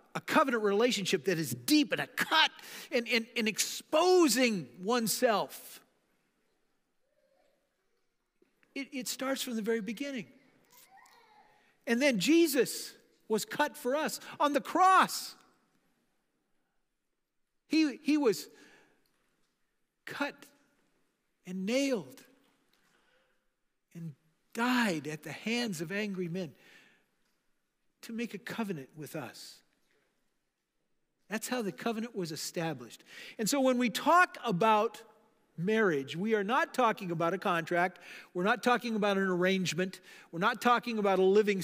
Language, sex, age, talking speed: English, male, 50-69, 120 wpm